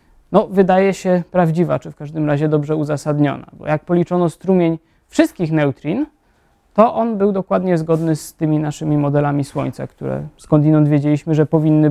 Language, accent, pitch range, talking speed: Polish, native, 145-185 Hz, 155 wpm